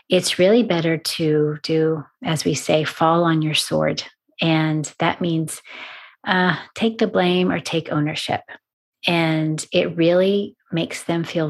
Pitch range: 155-180 Hz